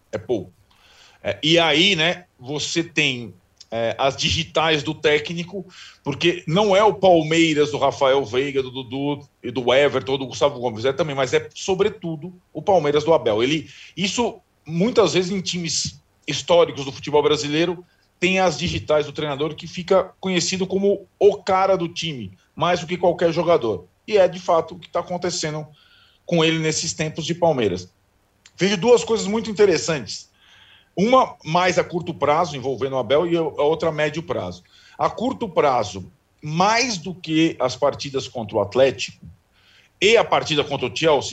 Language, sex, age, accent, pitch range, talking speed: Portuguese, male, 40-59, Brazilian, 135-180 Hz, 170 wpm